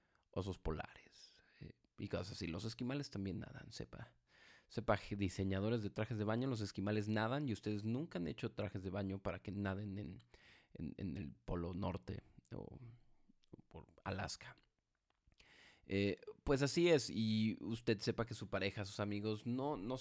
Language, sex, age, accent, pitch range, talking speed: Spanish, male, 30-49, Mexican, 95-120 Hz, 165 wpm